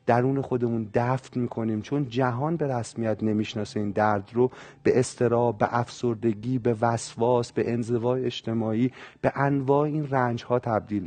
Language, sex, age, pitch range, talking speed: Persian, male, 40-59, 115-145 Hz, 145 wpm